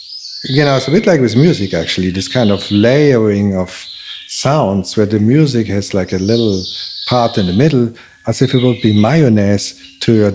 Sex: male